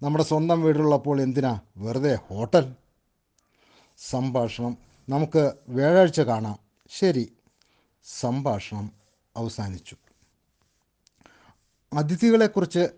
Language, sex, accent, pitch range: Malayalam, male, native, 120-160 Hz